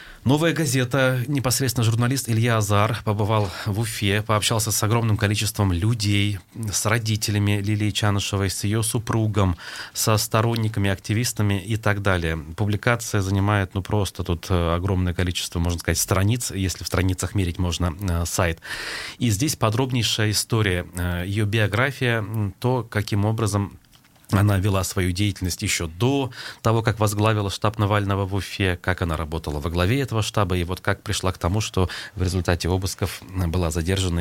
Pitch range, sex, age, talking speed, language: 95-115 Hz, male, 30-49, 145 wpm, Russian